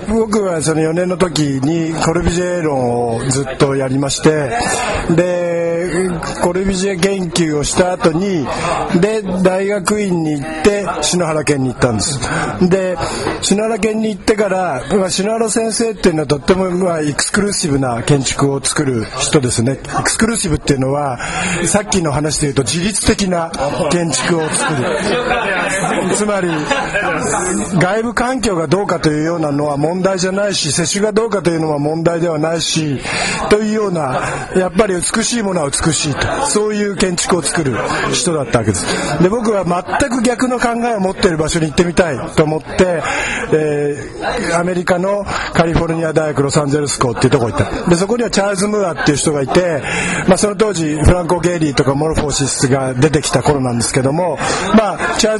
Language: Japanese